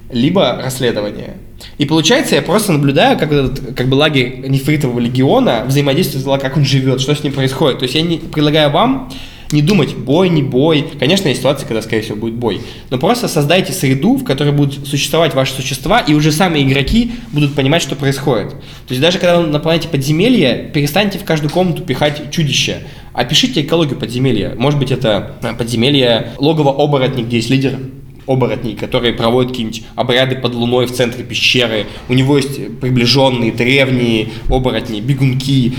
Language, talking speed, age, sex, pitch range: Russian, 165 wpm, 20-39, male, 120-145 Hz